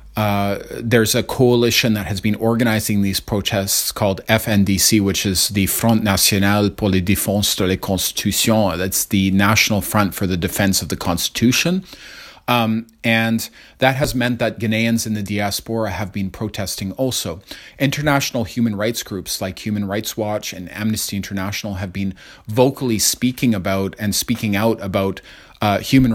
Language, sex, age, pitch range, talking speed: English, male, 30-49, 100-115 Hz, 160 wpm